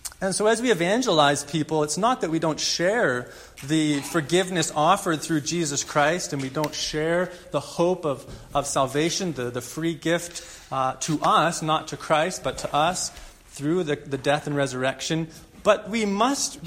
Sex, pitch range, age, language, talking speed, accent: male, 150-195 Hz, 30-49, English, 175 wpm, American